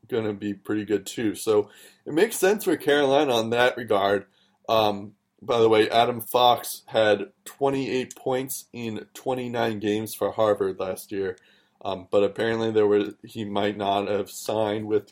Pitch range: 105-130 Hz